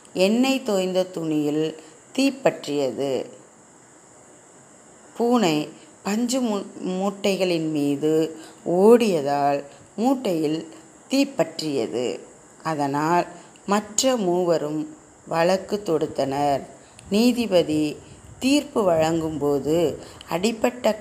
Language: Tamil